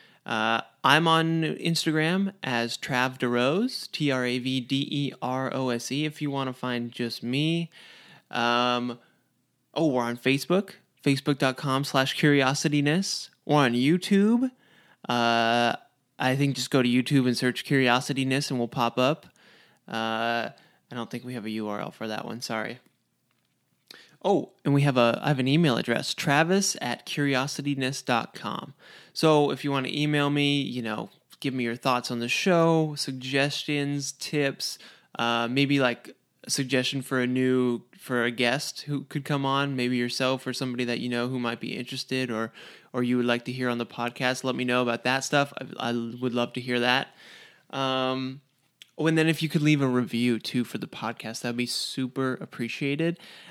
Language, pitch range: English, 120-145 Hz